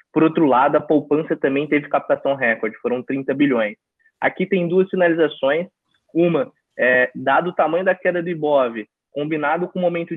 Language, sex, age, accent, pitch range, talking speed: Portuguese, male, 20-39, Brazilian, 140-170 Hz, 175 wpm